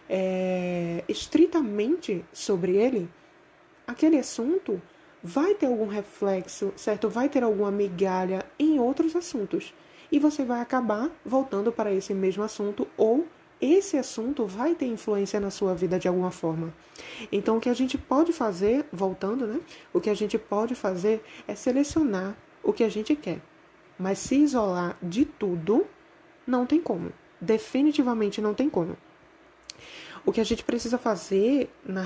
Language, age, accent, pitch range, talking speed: English, 20-39, Brazilian, 200-295 Hz, 150 wpm